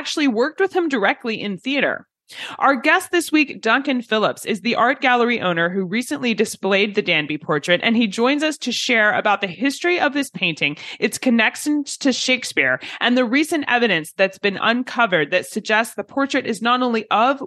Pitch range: 185-255 Hz